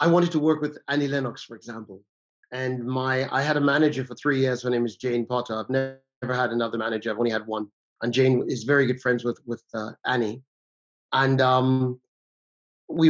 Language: English